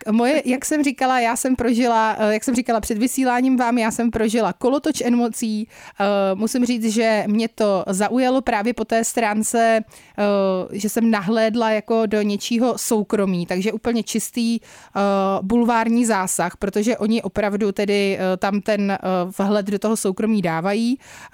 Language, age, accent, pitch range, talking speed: Czech, 20-39, native, 200-230 Hz, 140 wpm